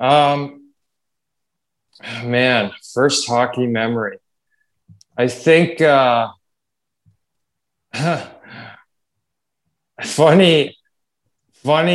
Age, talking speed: 20-39, 50 wpm